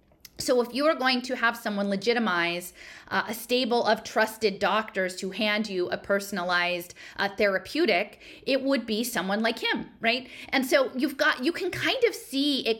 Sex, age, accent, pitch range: female, 40-59, American, 200-255 Hz